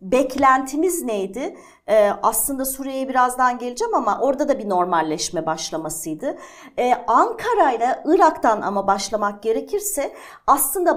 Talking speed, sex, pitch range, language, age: 115 wpm, female, 220-305 Hz, Turkish, 50-69